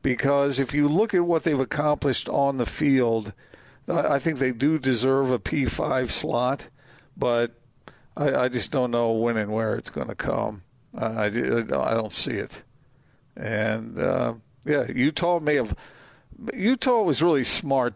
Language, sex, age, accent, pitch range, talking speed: English, male, 50-69, American, 115-140 Hz, 160 wpm